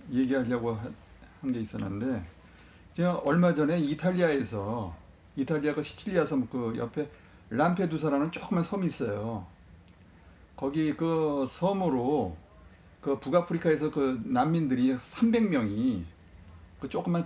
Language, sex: Korean, male